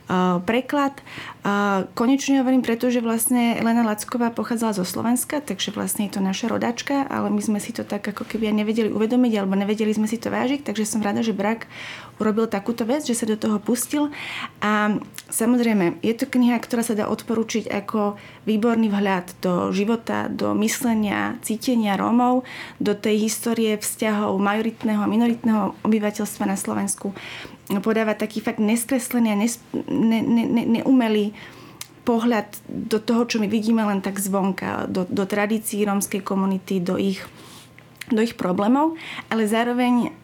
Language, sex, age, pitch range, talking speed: Slovak, female, 30-49, 205-235 Hz, 160 wpm